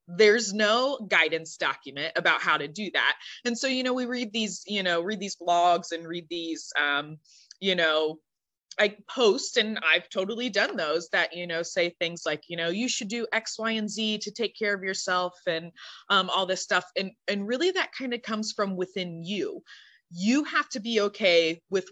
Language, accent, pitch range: English, American, 165-215 Hz